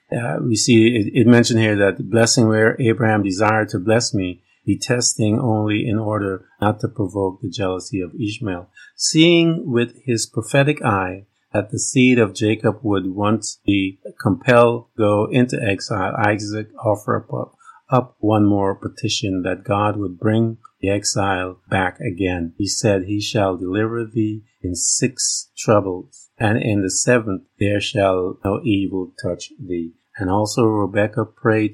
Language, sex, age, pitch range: English, male, 50-69, 95-115 Hz